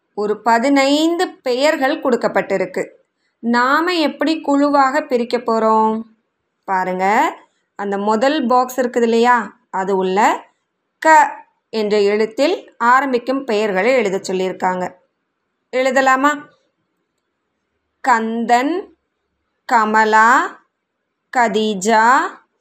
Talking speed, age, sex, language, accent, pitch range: 70 wpm, 20-39, female, Tamil, native, 205-275 Hz